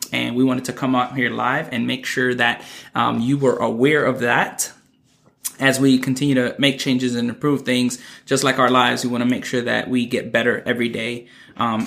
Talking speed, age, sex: 215 wpm, 20-39, male